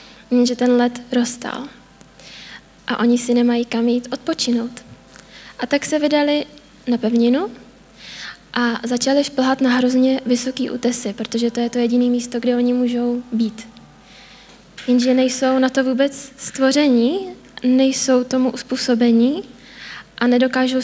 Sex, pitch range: female, 235-255 Hz